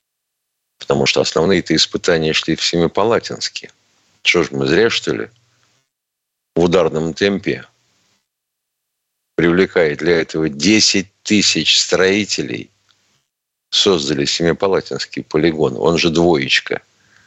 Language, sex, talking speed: Russian, male, 95 wpm